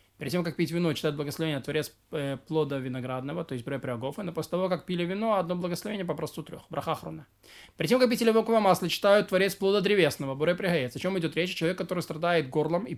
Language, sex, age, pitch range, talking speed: Russian, male, 20-39, 155-185 Hz, 215 wpm